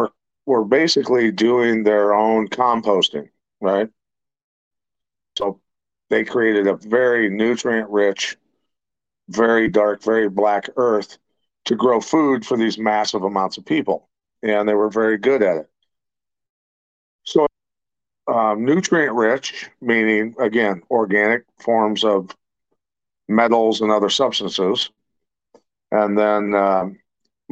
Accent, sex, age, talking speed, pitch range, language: American, male, 50-69, 105 wpm, 100-115 Hz, English